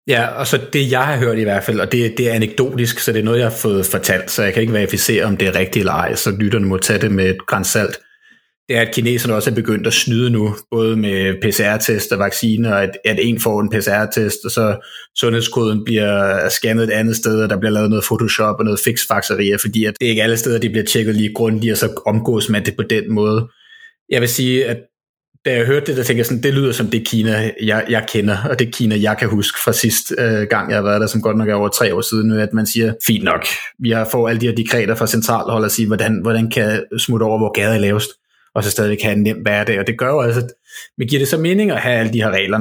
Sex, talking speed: male, 270 wpm